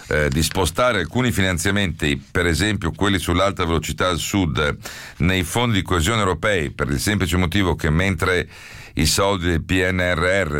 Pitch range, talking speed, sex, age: 75-90 Hz, 155 wpm, male, 50-69